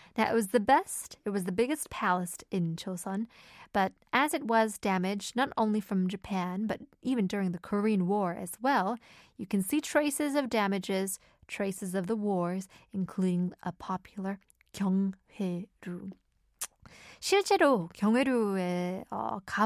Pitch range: 190-245 Hz